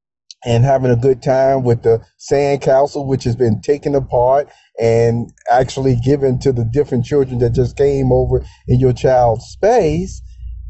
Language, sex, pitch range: English, male, 120-175 Hz